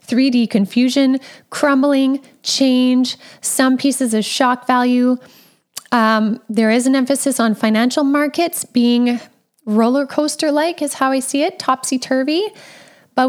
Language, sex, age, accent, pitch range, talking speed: English, female, 10-29, American, 225-275 Hz, 130 wpm